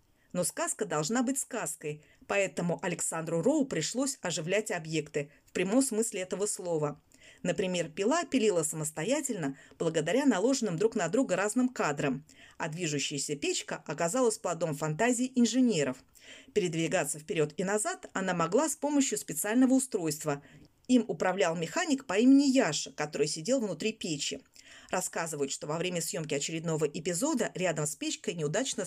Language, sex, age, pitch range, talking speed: Russian, female, 30-49, 155-240 Hz, 135 wpm